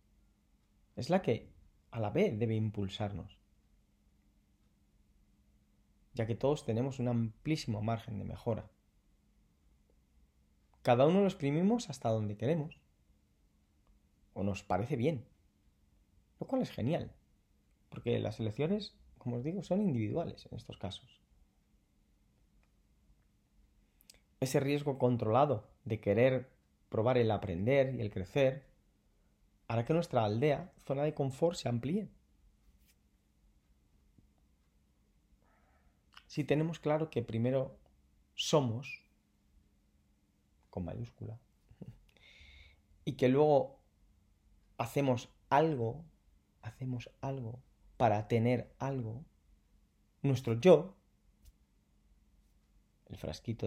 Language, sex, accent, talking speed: Spanish, male, Spanish, 95 wpm